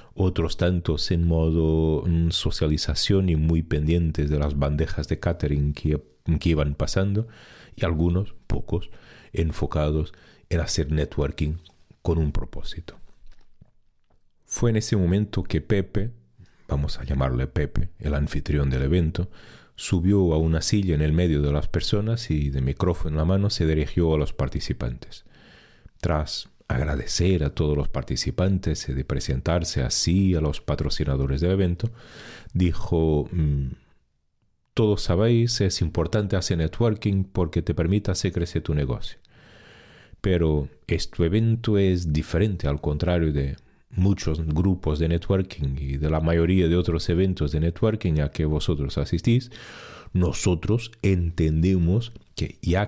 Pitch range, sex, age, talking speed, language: 75-95 Hz, male, 40-59, 135 wpm, Spanish